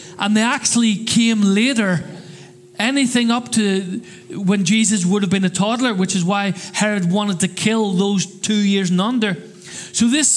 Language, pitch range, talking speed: English, 185-230 Hz, 170 wpm